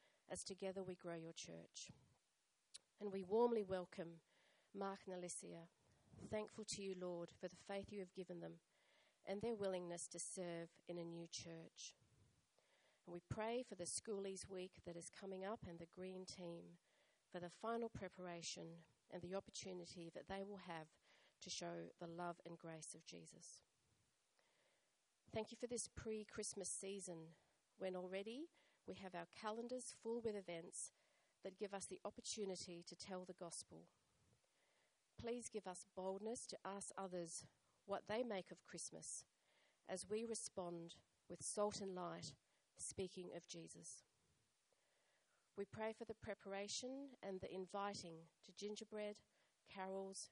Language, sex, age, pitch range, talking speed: English, female, 40-59, 170-205 Hz, 150 wpm